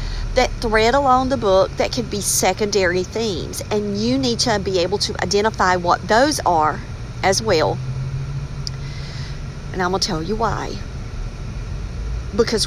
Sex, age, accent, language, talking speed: female, 50-69, American, English, 140 wpm